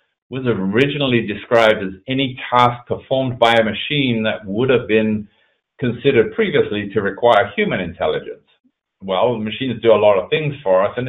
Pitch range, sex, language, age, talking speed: 95-125 Hz, male, English, 50-69, 160 wpm